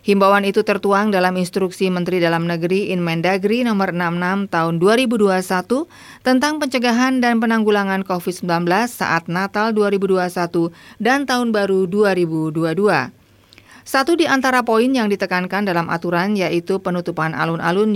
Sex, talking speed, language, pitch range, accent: female, 120 wpm, Indonesian, 180-225 Hz, native